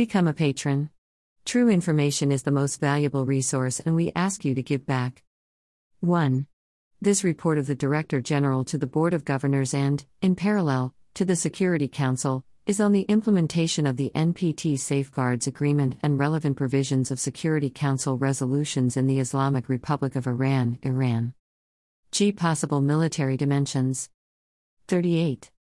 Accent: American